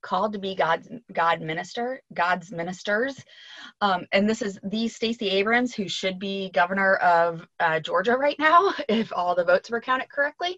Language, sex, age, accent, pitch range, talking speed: English, female, 20-39, American, 175-230 Hz, 175 wpm